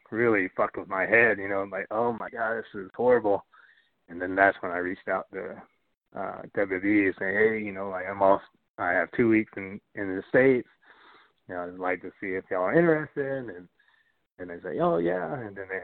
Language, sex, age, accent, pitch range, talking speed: English, male, 30-49, American, 95-110 Hz, 225 wpm